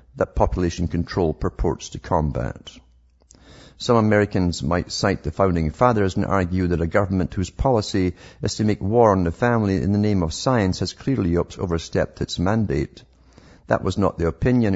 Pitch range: 80-100 Hz